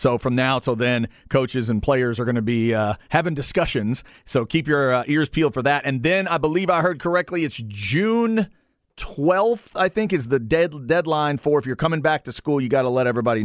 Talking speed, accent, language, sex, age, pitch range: 225 wpm, American, English, male, 40-59, 130-170 Hz